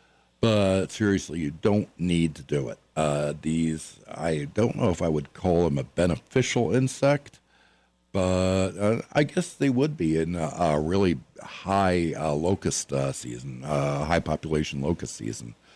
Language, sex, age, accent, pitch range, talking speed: English, male, 60-79, American, 75-100 Hz, 165 wpm